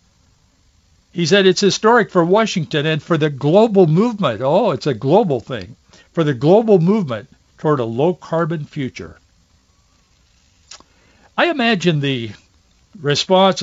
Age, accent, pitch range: 60-79, American, 110-165 Hz